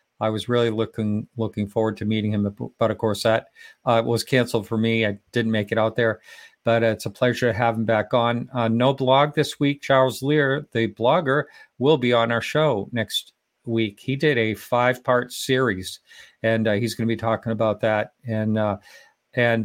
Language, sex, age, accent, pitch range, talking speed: English, male, 50-69, American, 110-125 Hz, 200 wpm